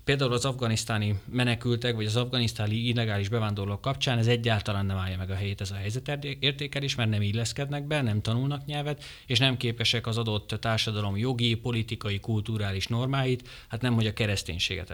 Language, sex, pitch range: Hungarian, male, 105-135 Hz